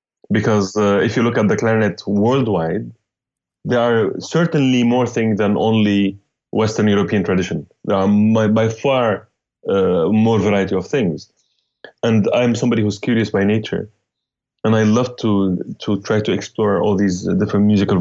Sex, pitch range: male, 100-120 Hz